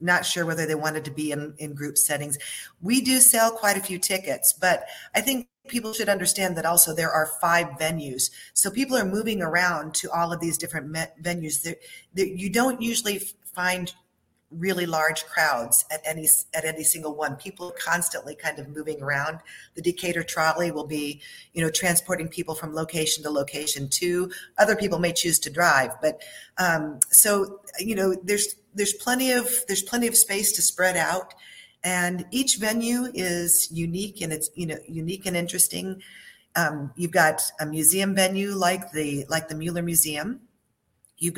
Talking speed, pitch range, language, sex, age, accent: 180 wpm, 155-185 Hz, English, female, 40-59, American